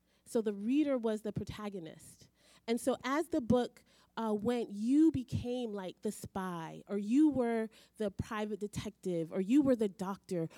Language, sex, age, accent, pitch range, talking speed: English, female, 30-49, American, 190-255 Hz, 165 wpm